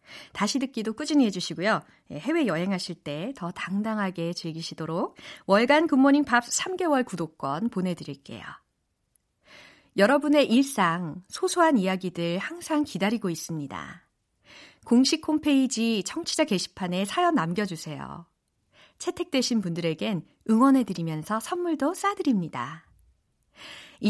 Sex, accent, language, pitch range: female, native, Korean, 180-280 Hz